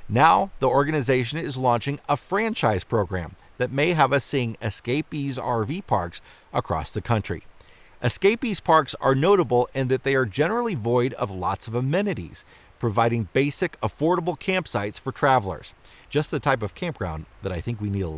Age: 40-59